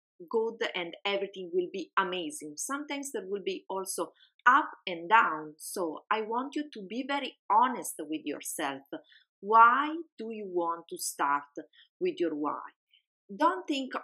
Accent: Italian